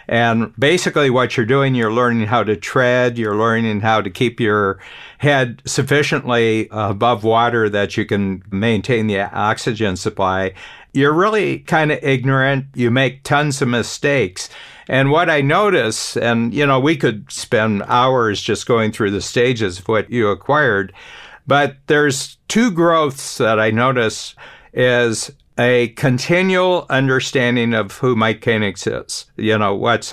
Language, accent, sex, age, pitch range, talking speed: English, American, male, 50-69, 110-135 Hz, 150 wpm